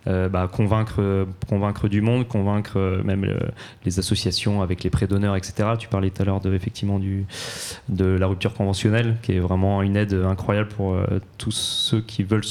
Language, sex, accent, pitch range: English, male, French, 100-115 Hz